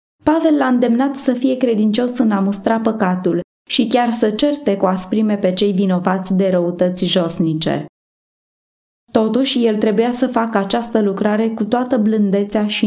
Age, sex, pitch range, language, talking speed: 20-39, female, 195-245 Hz, Romanian, 150 wpm